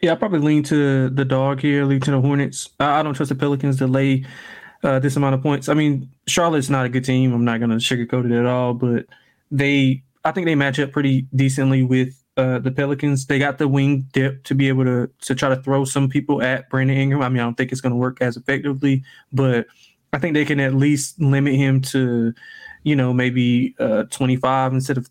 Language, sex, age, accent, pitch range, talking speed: English, male, 20-39, American, 130-145 Hz, 235 wpm